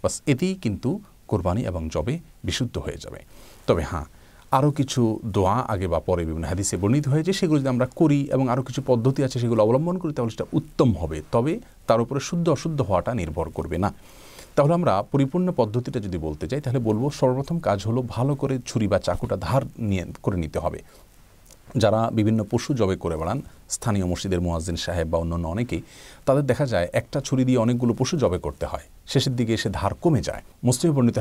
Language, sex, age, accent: Bengali, male, 40-59, native